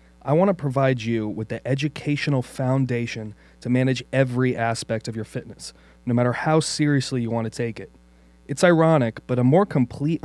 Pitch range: 115-140 Hz